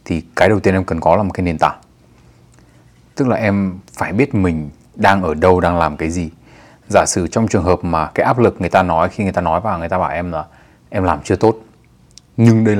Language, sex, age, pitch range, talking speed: Vietnamese, male, 20-39, 90-115 Hz, 250 wpm